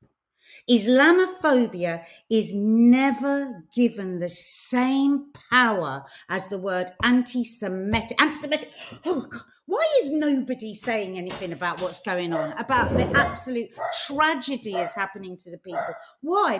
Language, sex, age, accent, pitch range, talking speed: English, female, 50-69, British, 205-295 Hz, 125 wpm